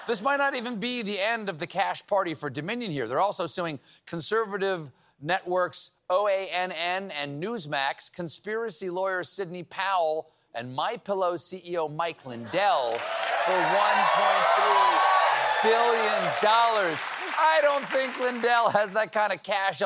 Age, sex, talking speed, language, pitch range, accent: 40-59, male, 130 wpm, English, 170-210 Hz, American